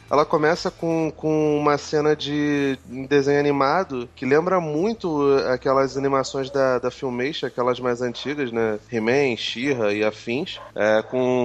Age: 30-49